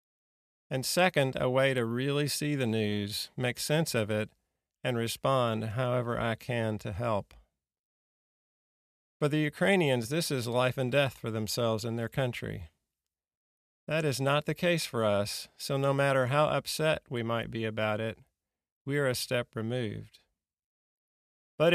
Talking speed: 155 wpm